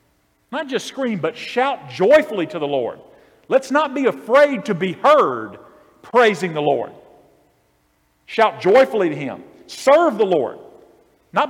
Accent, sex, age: American, male, 50-69